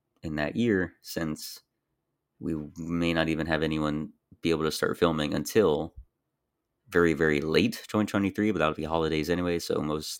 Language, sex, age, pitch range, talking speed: English, male, 30-49, 80-90 Hz, 160 wpm